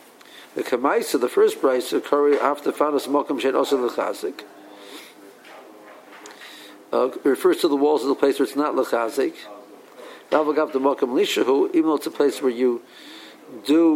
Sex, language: male, English